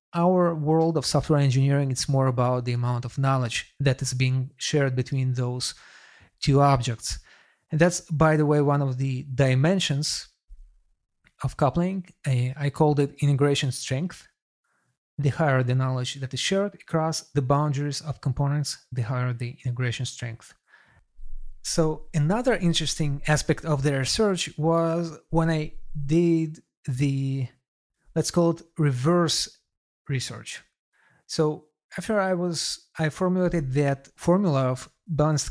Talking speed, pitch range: 135 wpm, 135-170 Hz